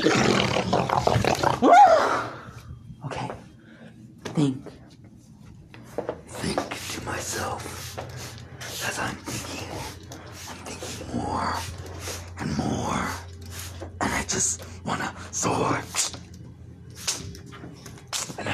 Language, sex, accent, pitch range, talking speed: English, male, American, 110-165 Hz, 60 wpm